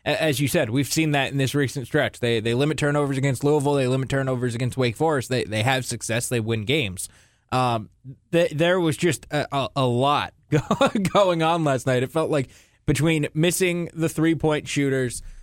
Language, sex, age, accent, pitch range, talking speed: English, male, 20-39, American, 130-155 Hz, 195 wpm